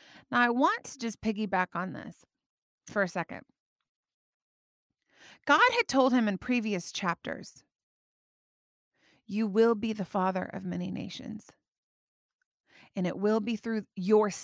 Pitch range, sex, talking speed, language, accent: 195-250 Hz, female, 135 wpm, English, American